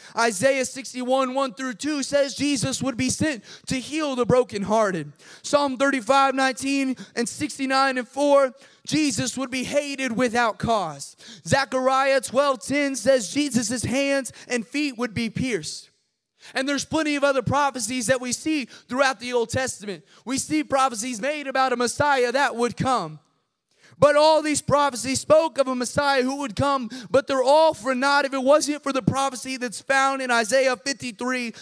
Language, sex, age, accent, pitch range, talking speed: English, male, 20-39, American, 240-275 Hz, 165 wpm